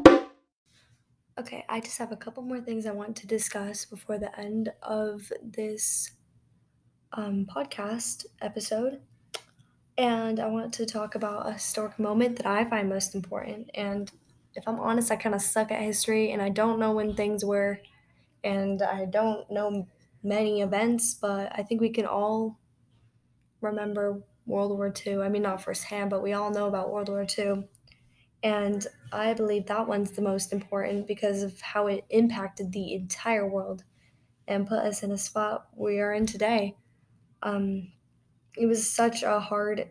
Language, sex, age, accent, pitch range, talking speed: English, female, 10-29, American, 200-220 Hz, 165 wpm